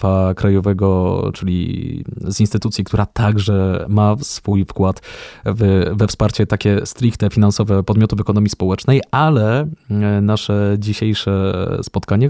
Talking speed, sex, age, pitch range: 105 wpm, male, 20-39, 100-120 Hz